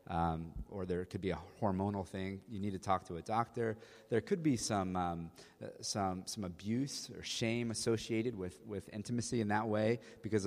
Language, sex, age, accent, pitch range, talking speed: English, male, 30-49, American, 90-110 Hz, 190 wpm